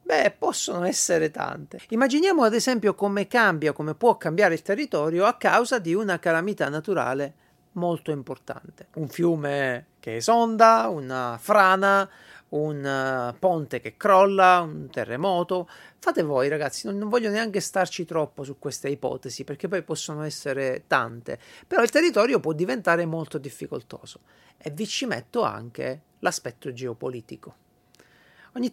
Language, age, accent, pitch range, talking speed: Italian, 40-59, native, 145-195 Hz, 135 wpm